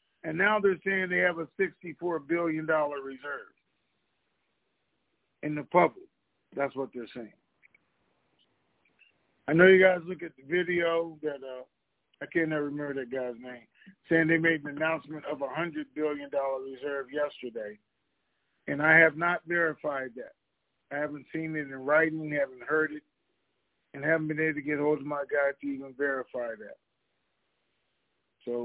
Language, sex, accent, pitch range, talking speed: English, male, American, 140-160 Hz, 155 wpm